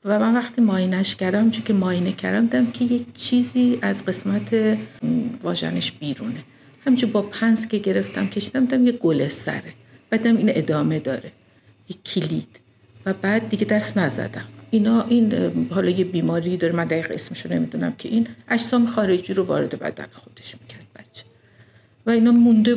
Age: 50-69